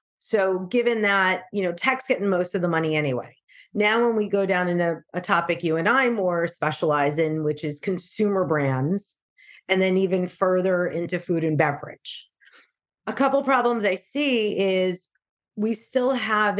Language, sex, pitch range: English, female, 175-220 Hz